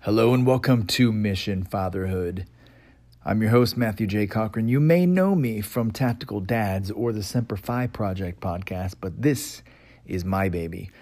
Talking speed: 165 wpm